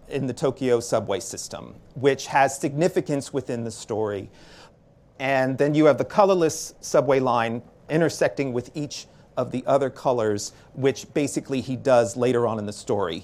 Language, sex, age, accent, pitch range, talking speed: Russian, male, 40-59, American, 120-155 Hz, 160 wpm